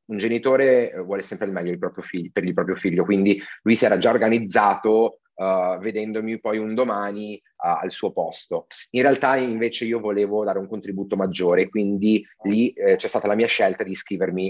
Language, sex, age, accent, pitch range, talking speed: Italian, male, 30-49, native, 95-115 Hz, 180 wpm